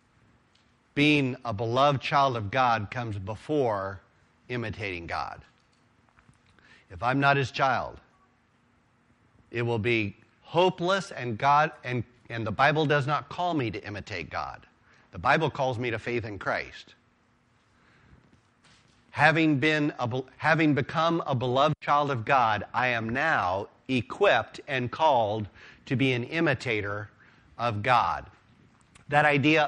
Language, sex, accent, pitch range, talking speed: English, male, American, 115-145 Hz, 130 wpm